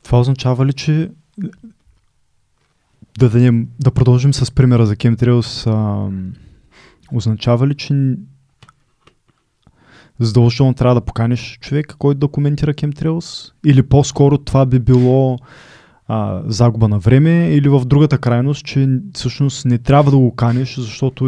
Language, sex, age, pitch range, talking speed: Bulgarian, male, 20-39, 115-140 Hz, 135 wpm